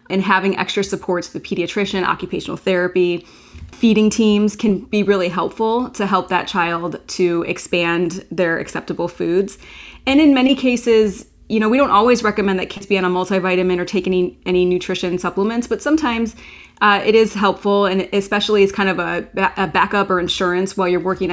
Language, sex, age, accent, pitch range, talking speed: English, female, 20-39, American, 180-215 Hz, 185 wpm